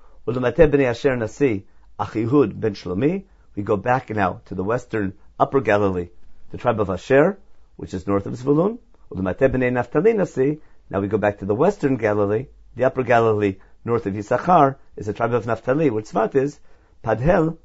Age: 50-69